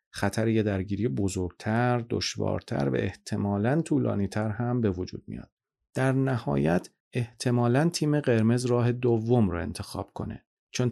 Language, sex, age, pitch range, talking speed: Persian, male, 40-59, 100-120 Hz, 125 wpm